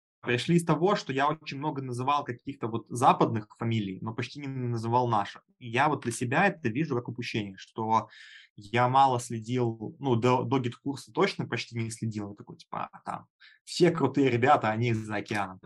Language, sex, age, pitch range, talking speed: Russian, male, 20-39, 110-135 Hz, 175 wpm